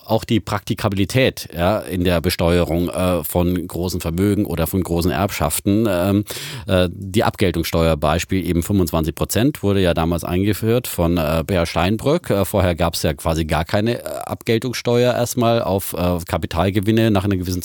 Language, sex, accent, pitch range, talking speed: German, male, German, 85-105 Hz, 155 wpm